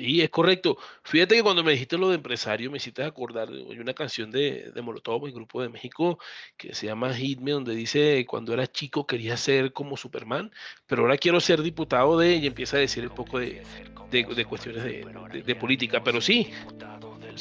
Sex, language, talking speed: male, Spanish, 210 wpm